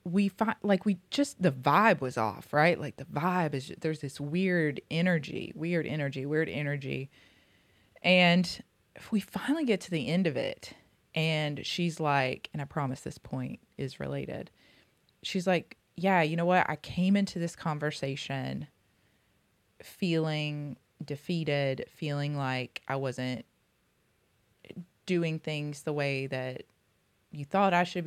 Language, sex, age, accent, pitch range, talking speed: English, female, 20-39, American, 135-170 Hz, 145 wpm